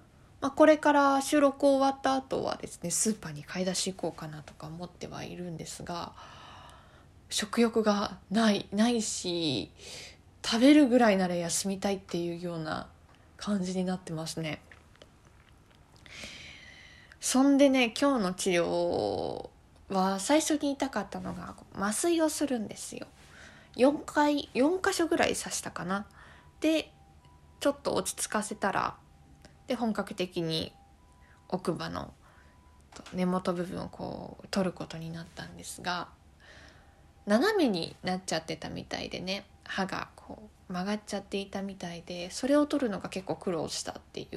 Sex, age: female, 20-39